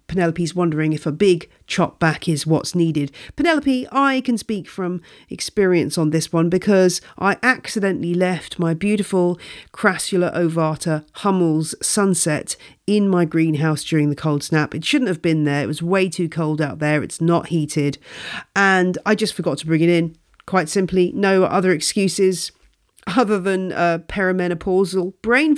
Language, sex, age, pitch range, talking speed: English, female, 40-59, 160-210 Hz, 160 wpm